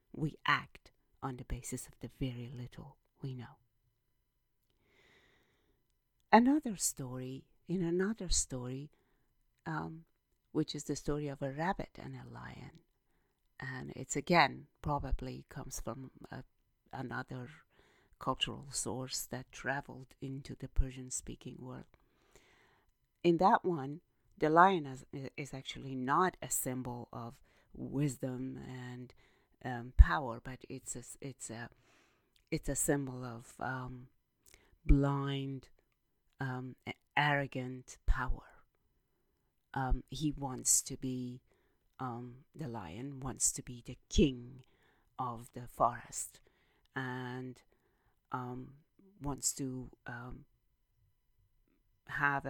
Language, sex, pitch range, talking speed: English, female, 125-140 Hz, 110 wpm